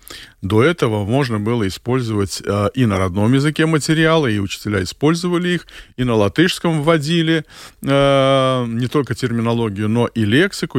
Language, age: Russian, 40-59